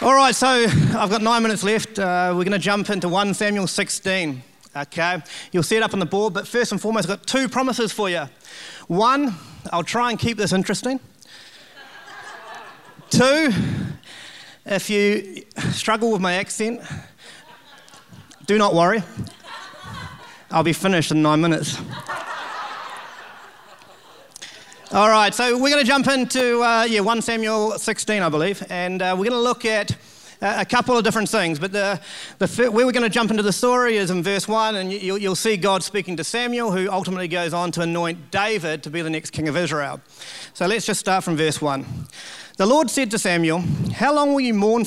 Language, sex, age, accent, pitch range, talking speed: English, male, 30-49, Australian, 170-225 Hz, 180 wpm